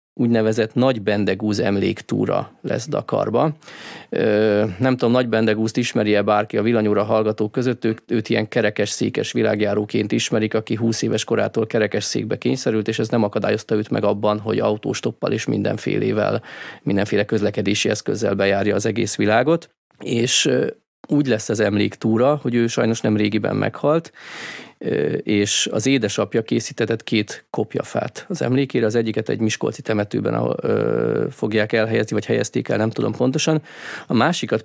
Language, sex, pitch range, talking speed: Hungarian, male, 105-120 Hz, 140 wpm